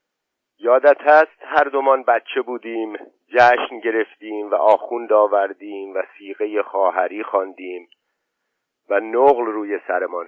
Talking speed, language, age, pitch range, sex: 110 wpm, Persian, 50-69, 105-145 Hz, male